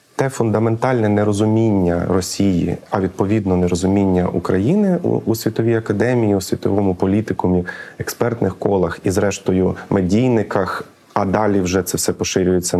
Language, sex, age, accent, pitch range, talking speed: Ukrainian, male, 30-49, native, 95-125 Hz, 120 wpm